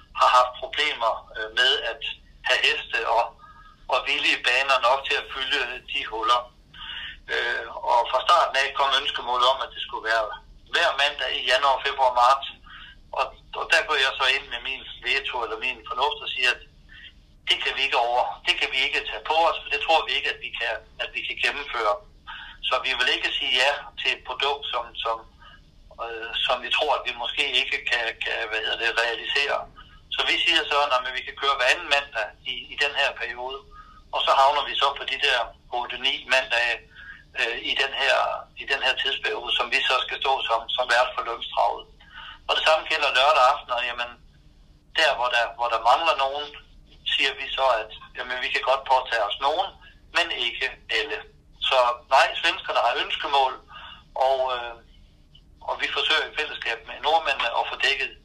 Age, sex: 60-79, male